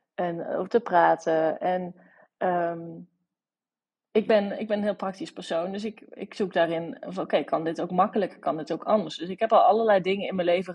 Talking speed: 210 wpm